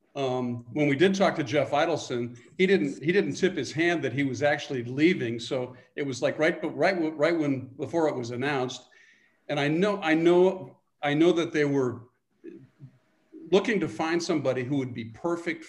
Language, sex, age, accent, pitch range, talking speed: English, male, 50-69, American, 125-165 Hz, 190 wpm